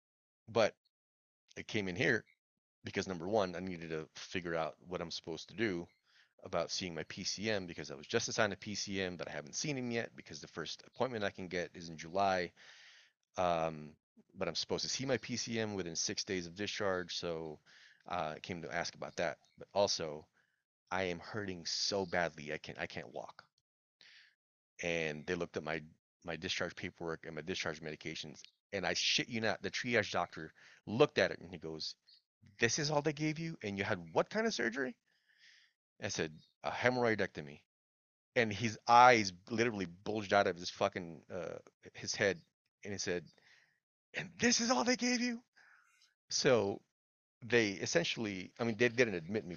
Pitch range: 85-120 Hz